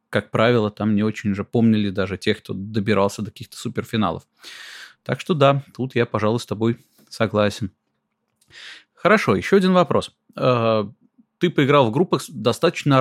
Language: Russian